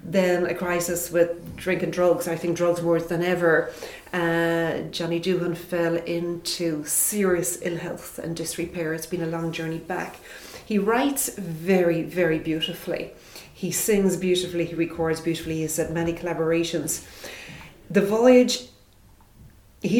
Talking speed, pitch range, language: 140 wpm, 170-200 Hz, English